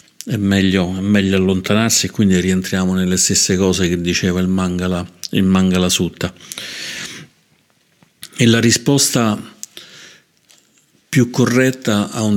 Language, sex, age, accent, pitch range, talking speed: Italian, male, 50-69, native, 90-105 Hz, 120 wpm